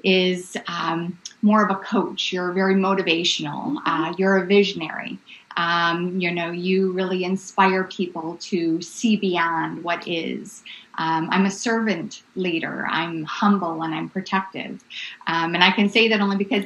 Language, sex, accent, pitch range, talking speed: English, female, American, 180-225 Hz, 155 wpm